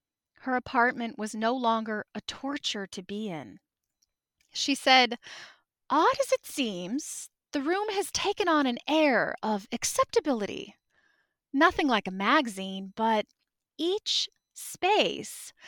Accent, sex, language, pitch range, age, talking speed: American, female, English, 230-320 Hz, 20-39, 125 wpm